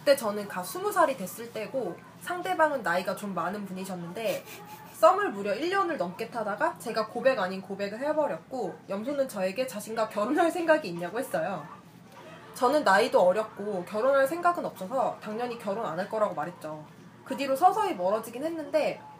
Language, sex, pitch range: Korean, female, 185-280 Hz